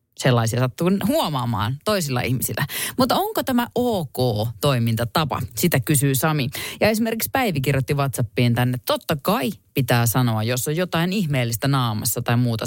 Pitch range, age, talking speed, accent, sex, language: 120-180 Hz, 30-49, 135 wpm, native, female, Finnish